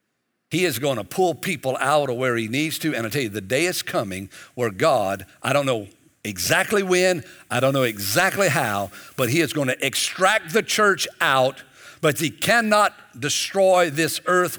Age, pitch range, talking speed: 60-79, 115-170 Hz, 195 wpm